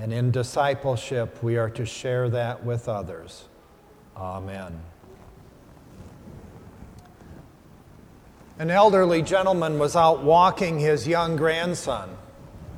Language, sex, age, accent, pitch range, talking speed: English, male, 40-59, American, 130-165 Hz, 95 wpm